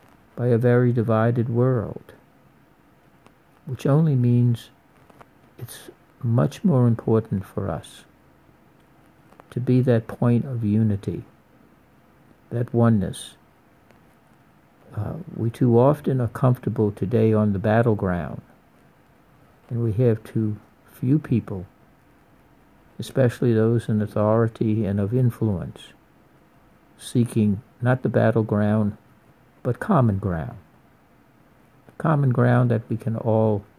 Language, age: English, 60-79